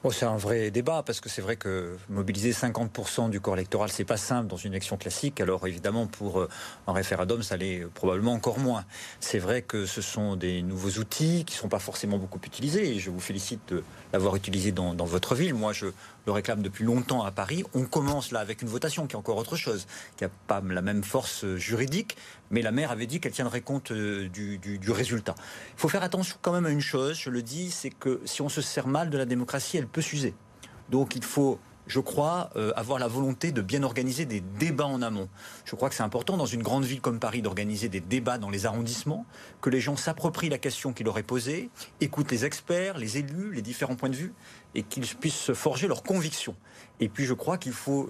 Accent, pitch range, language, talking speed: French, 105-140 Hz, French, 230 wpm